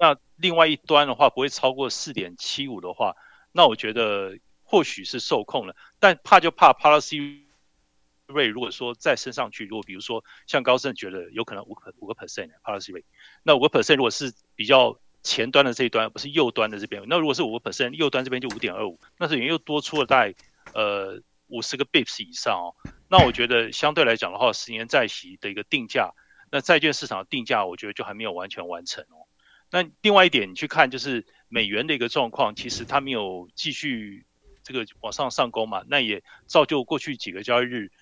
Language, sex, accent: Chinese, male, native